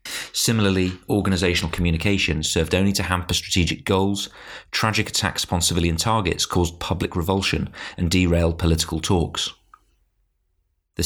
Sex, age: male, 30-49